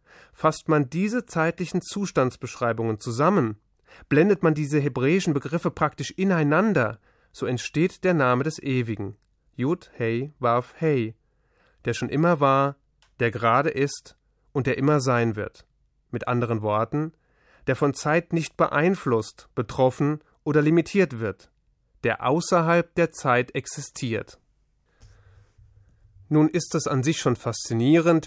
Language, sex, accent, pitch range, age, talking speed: German, male, German, 120-160 Hz, 30-49, 125 wpm